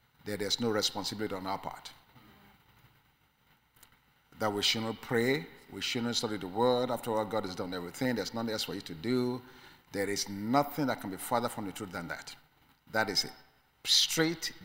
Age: 50-69